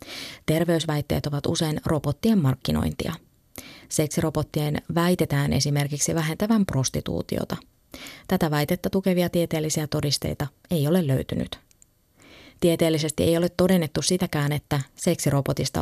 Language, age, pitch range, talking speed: Finnish, 30-49, 140-175 Hz, 95 wpm